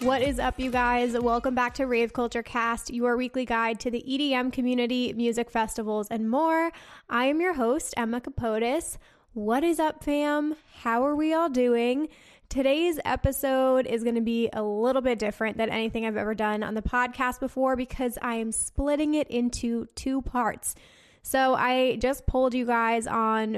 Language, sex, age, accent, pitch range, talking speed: English, female, 10-29, American, 220-255 Hz, 180 wpm